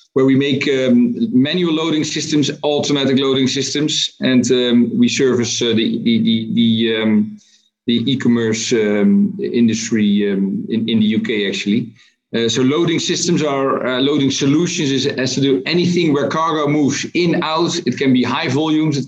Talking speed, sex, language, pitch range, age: 165 wpm, male, English, 115-150 Hz, 50-69